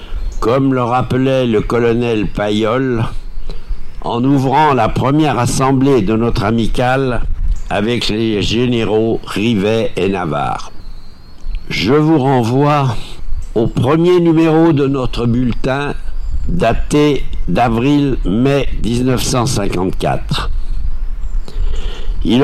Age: 60-79